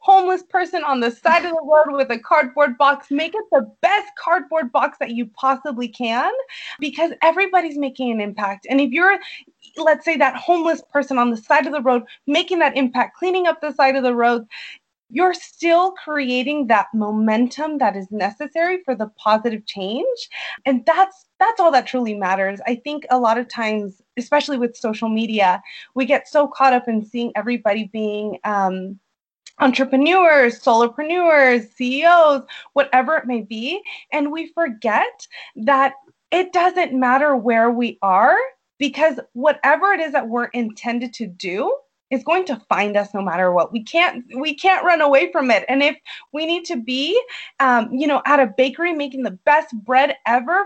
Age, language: 20-39, English